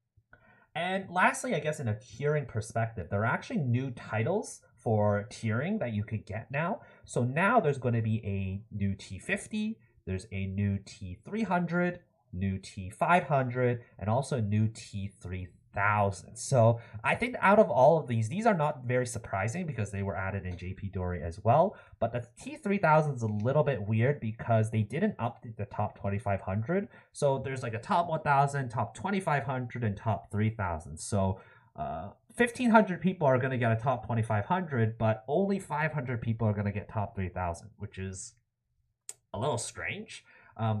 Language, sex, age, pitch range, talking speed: English, male, 30-49, 105-140 Hz, 170 wpm